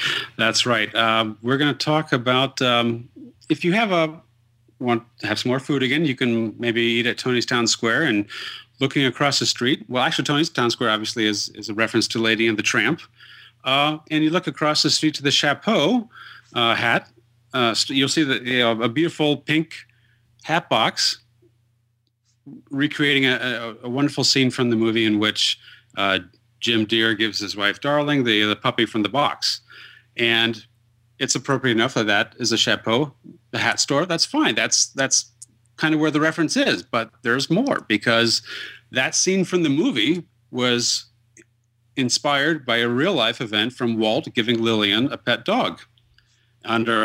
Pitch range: 115-140 Hz